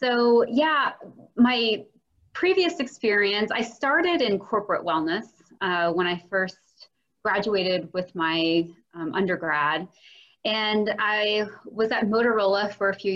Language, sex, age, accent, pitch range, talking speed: English, female, 30-49, American, 180-235 Hz, 125 wpm